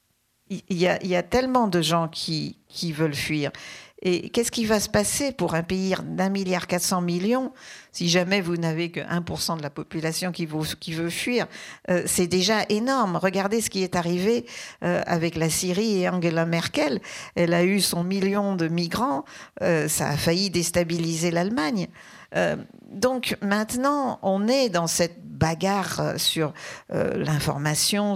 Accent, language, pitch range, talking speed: French, French, 165-205 Hz, 175 wpm